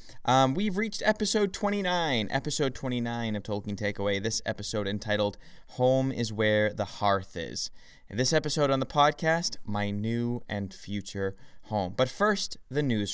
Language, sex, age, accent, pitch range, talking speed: English, male, 20-39, American, 110-160 Hz, 150 wpm